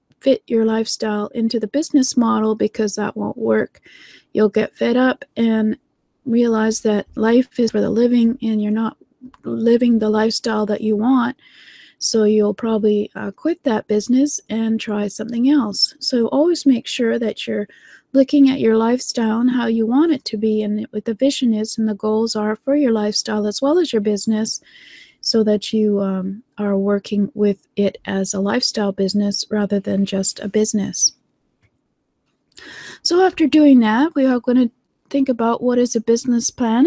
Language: English